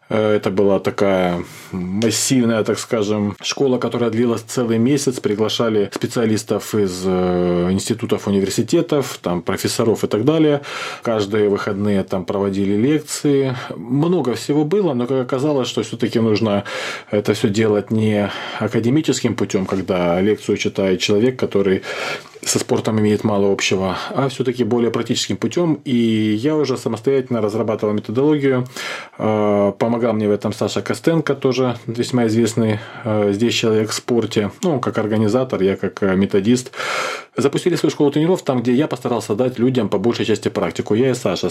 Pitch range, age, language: 105-130 Hz, 30-49, Russian